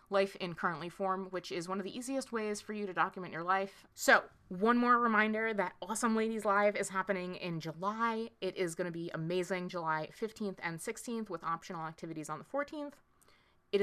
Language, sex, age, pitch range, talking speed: English, female, 20-39, 170-205 Hz, 200 wpm